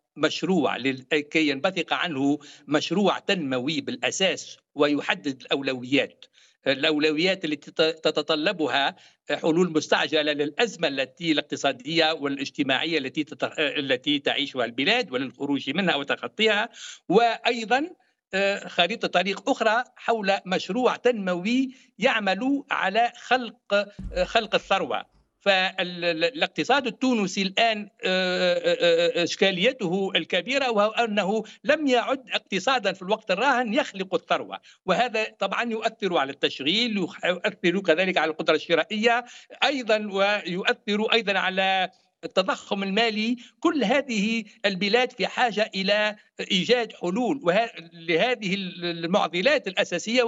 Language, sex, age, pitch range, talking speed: English, male, 60-79, 165-230 Hz, 95 wpm